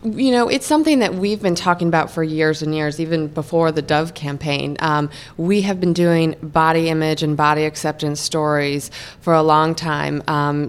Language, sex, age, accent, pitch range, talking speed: English, female, 20-39, American, 155-180 Hz, 190 wpm